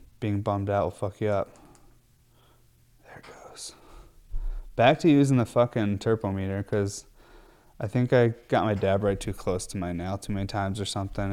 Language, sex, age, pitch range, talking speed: English, male, 20-39, 100-125 Hz, 180 wpm